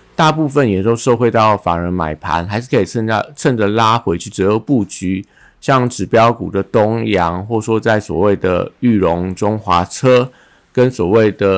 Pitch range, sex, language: 95-120 Hz, male, Chinese